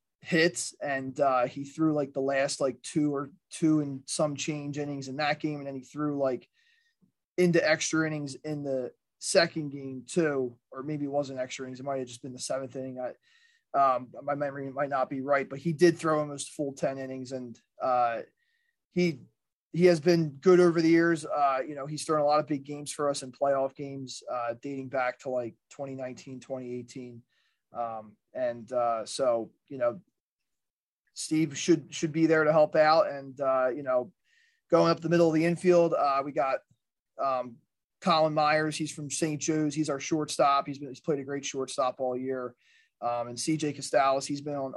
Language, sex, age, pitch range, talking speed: English, male, 20-39, 130-160 Hz, 200 wpm